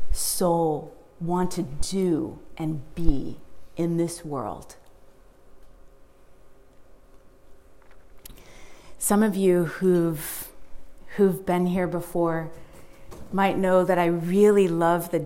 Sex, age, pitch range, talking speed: female, 30-49, 170-225 Hz, 95 wpm